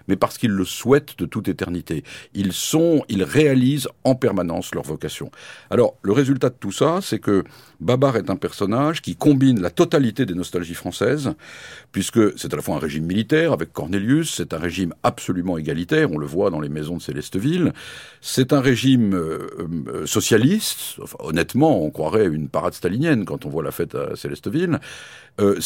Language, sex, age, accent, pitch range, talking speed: French, male, 50-69, French, 95-140 Hz, 185 wpm